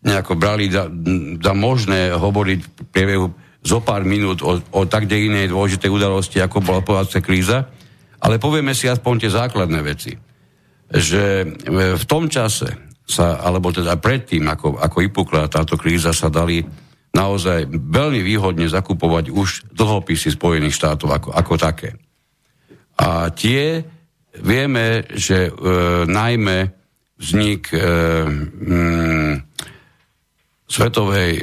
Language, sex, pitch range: Slovak, male, 90-115 Hz